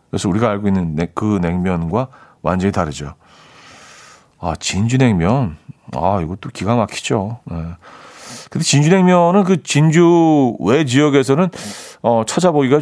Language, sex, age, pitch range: Korean, male, 40-59, 105-150 Hz